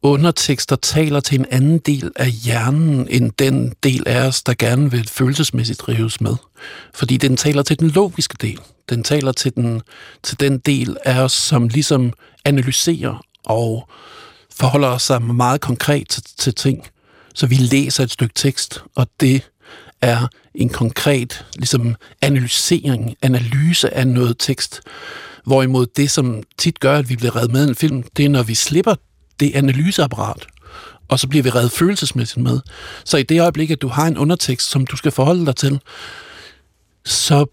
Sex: male